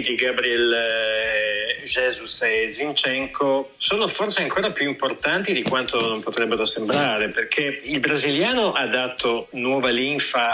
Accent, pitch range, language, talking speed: native, 115-135 Hz, Italian, 125 wpm